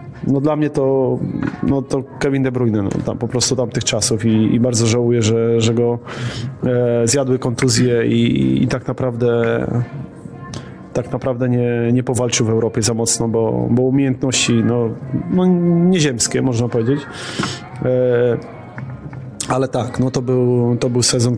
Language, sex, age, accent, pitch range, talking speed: Polish, male, 20-39, native, 120-135 Hz, 155 wpm